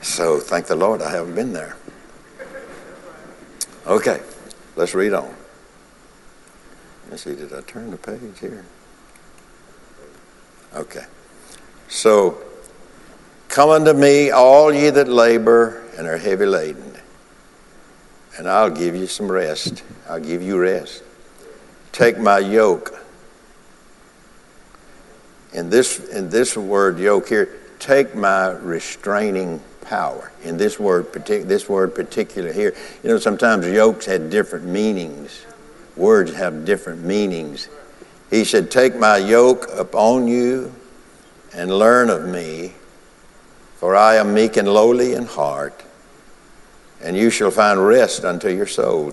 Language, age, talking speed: English, 60-79, 125 wpm